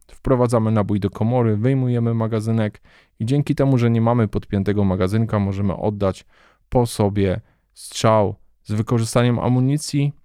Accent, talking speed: native, 130 wpm